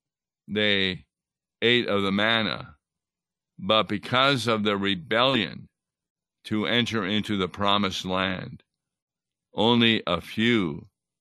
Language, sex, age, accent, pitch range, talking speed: English, male, 60-79, American, 95-115 Hz, 100 wpm